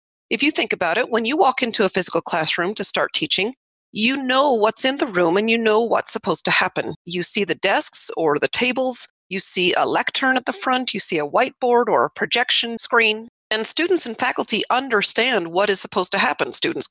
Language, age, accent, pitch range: English, 40-59, American, 185-260 Hz